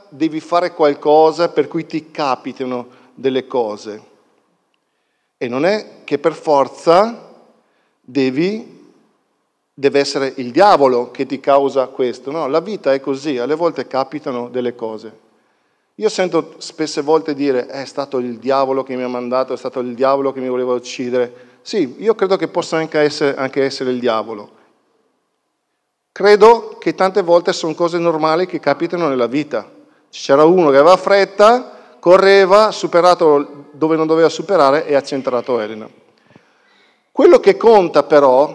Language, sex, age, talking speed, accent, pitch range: Italian, male, 50-69, 150 wpm, native, 135-180 Hz